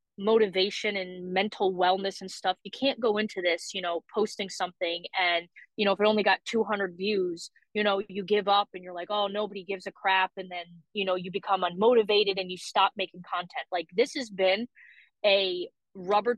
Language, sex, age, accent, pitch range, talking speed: English, female, 20-39, American, 185-215 Hz, 200 wpm